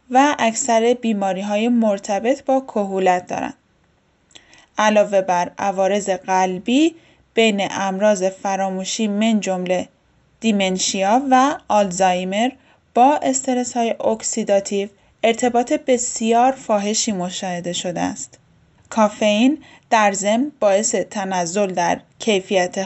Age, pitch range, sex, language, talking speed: 10-29, 200-260 Hz, female, Persian, 95 wpm